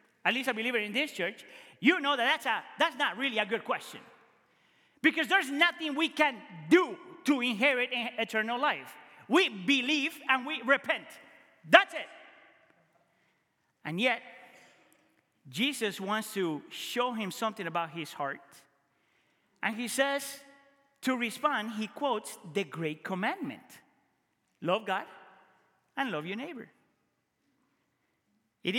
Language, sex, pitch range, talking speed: English, male, 210-285 Hz, 130 wpm